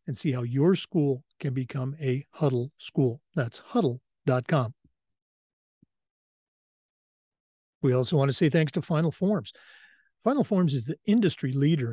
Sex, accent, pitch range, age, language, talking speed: male, American, 135-170 Hz, 50-69, English, 135 wpm